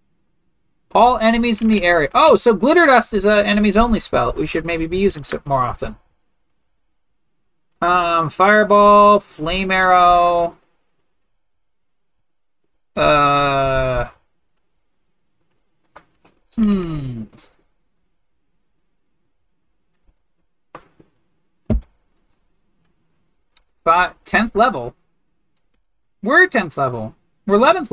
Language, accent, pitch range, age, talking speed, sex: English, American, 165-210 Hz, 40-59, 75 wpm, male